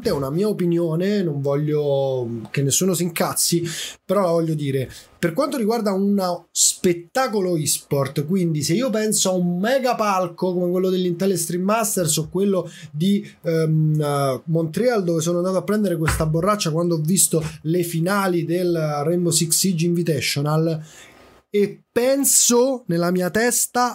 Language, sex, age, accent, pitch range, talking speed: Italian, male, 20-39, native, 165-220 Hz, 150 wpm